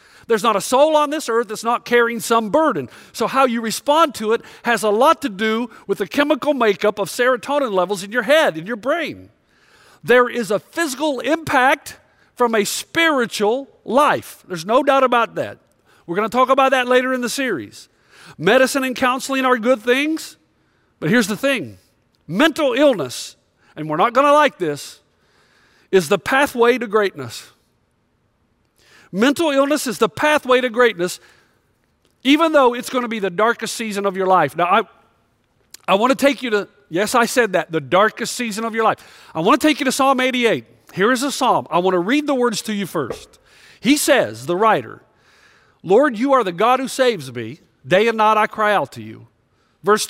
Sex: male